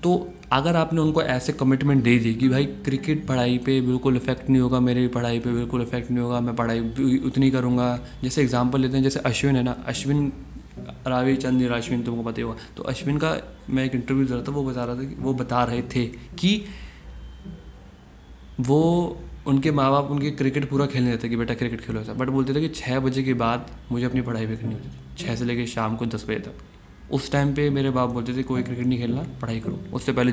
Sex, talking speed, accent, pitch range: male, 220 wpm, native, 120-140 Hz